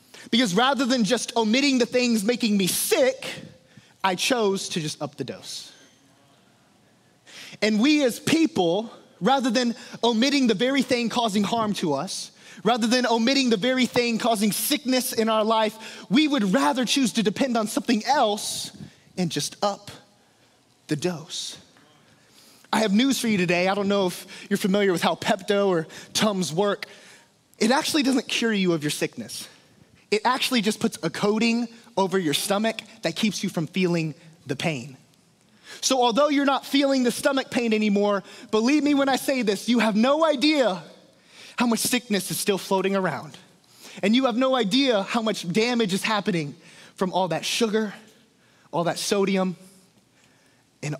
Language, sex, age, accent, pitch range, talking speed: English, male, 20-39, American, 175-240 Hz, 165 wpm